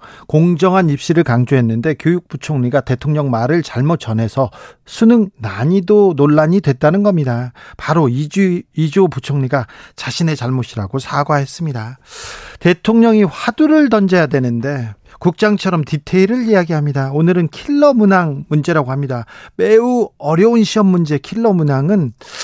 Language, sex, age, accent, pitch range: Korean, male, 40-59, native, 140-200 Hz